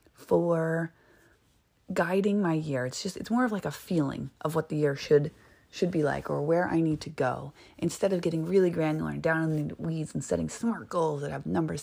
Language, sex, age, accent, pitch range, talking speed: English, female, 30-49, American, 145-180 Hz, 220 wpm